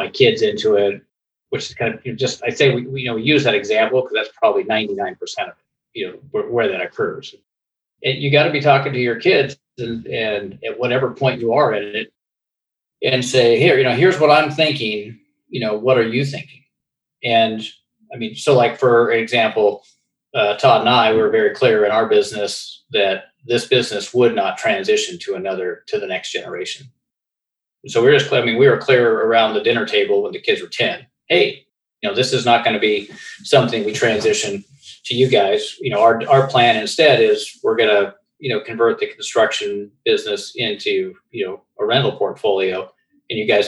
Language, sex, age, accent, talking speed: English, male, 40-59, American, 205 wpm